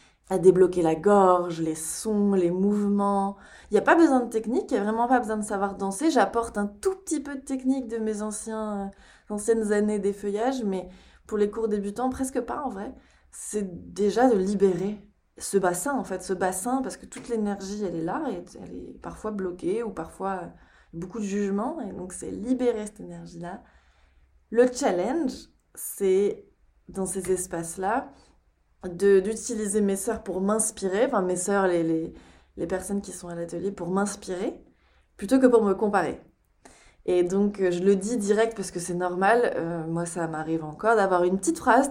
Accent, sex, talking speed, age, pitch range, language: French, female, 185 wpm, 20-39, 180-220 Hz, French